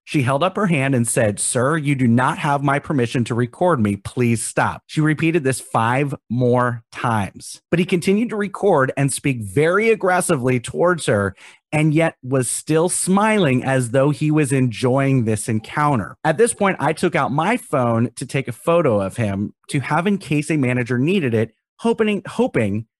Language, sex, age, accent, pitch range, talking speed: English, male, 30-49, American, 120-165 Hz, 190 wpm